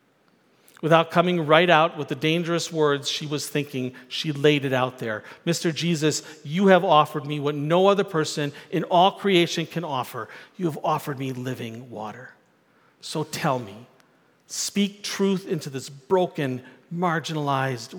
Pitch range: 140-185 Hz